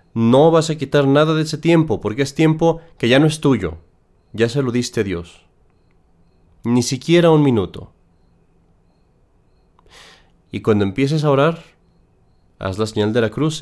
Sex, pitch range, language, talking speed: male, 95-155 Hz, Spanish, 160 wpm